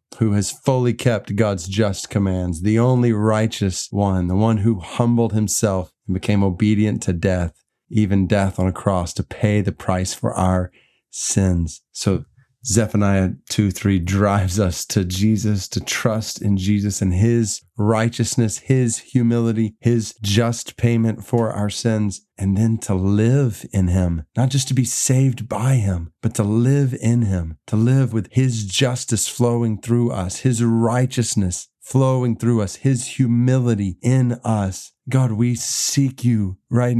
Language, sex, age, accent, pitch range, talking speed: English, male, 30-49, American, 100-125 Hz, 155 wpm